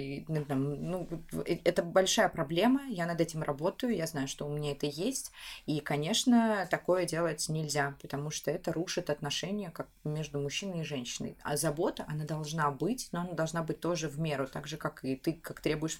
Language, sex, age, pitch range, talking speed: Russian, female, 20-39, 145-175 Hz, 185 wpm